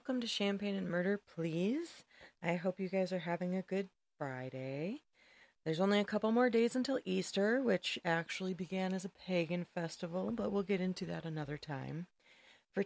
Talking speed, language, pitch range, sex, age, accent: 175 wpm, English, 165-200 Hz, female, 30-49, American